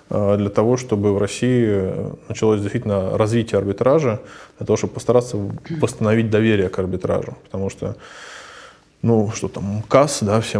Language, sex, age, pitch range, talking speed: Russian, male, 20-39, 100-115 Hz, 140 wpm